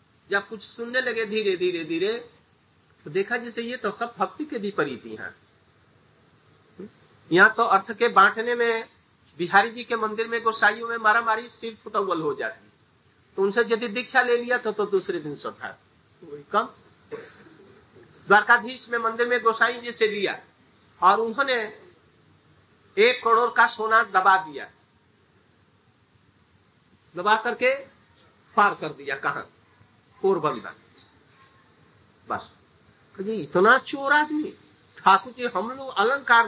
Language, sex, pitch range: Hindi, male, 190-245 Hz